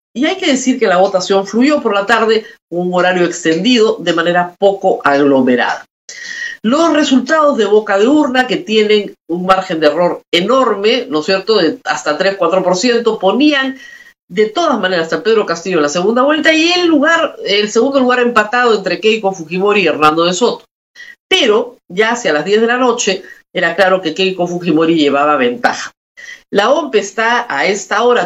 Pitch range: 175-250 Hz